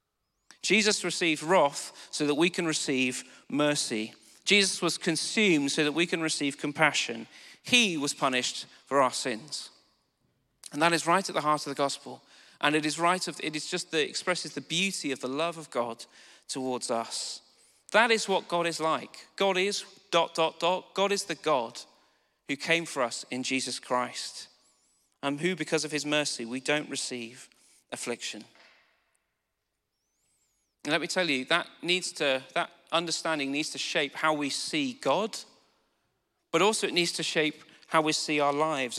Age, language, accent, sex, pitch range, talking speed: 40-59, English, British, male, 135-175 Hz, 170 wpm